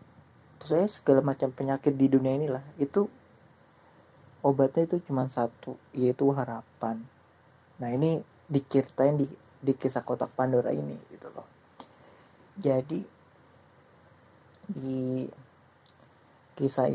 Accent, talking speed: native, 100 wpm